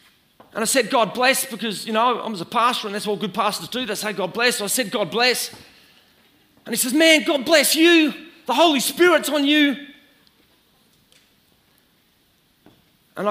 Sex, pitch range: male, 155-215 Hz